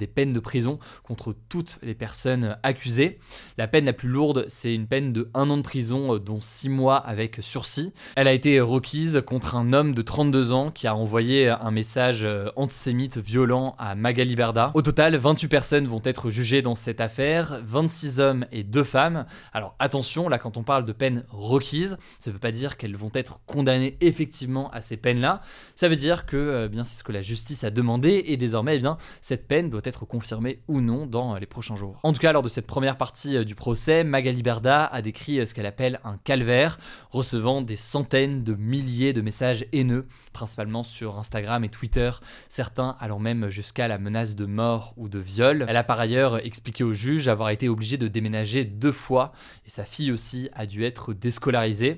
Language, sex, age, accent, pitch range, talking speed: French, male, 20-39, French, 115-135 Hz, 205 wpm